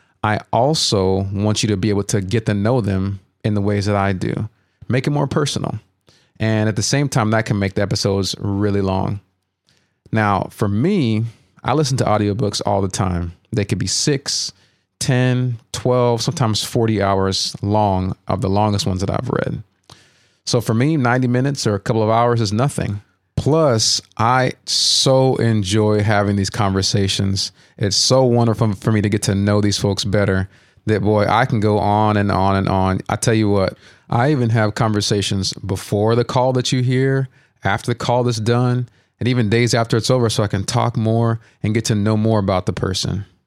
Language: English